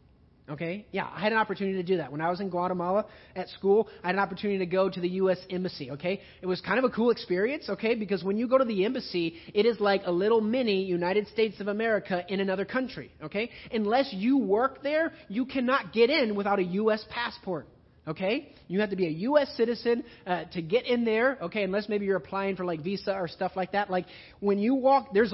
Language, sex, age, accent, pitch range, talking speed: English, male, 30-49, American, 190-250 Hz, 230 wpm